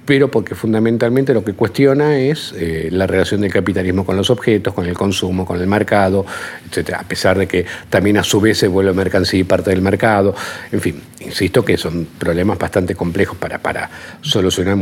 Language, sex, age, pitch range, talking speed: Spanish, male, 50-69, 95-120 Hz, 195 wpm